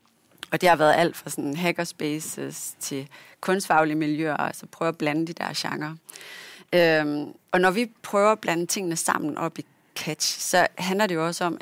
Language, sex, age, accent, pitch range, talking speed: Danish, female, 30-49, native, 160-200 Hz, 180 wpm